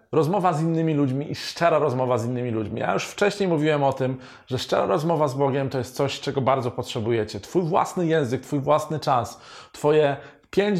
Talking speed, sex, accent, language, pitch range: 195 wpm, male, native, Polish, 120-150 Hz